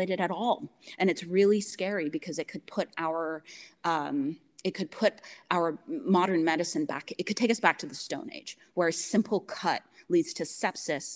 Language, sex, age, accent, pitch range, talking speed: English, female, 30-49, American, 155-200 Hz, 190 wpm